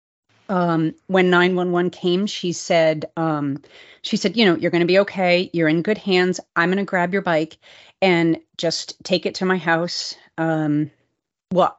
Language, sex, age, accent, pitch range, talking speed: English, female, 30-49, American, 160-185 Hz, 180 wpm